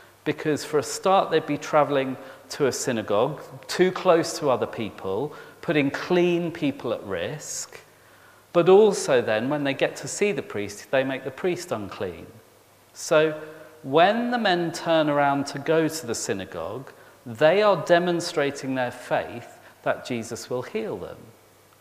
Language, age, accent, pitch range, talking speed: English, 40-59, British, 120-160 Hz, 155 wpm